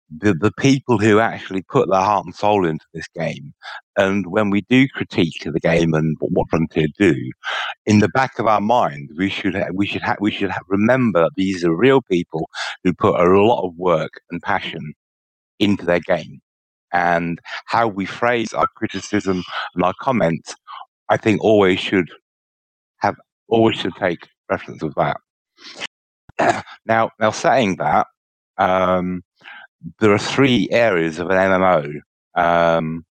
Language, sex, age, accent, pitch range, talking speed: English, male, 60-79, British, 85-105 Hz, 160 wpm